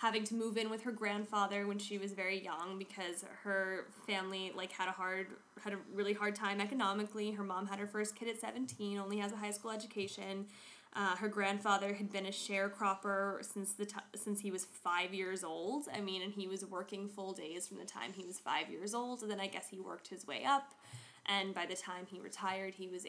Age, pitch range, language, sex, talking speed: 20-39, 190-210 Hz, English, female, 230 wpm